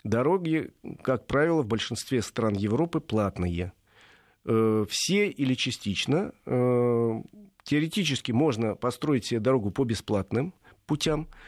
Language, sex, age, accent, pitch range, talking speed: Russian, male, 40-59, native, 110-145 Hz, 100 wpm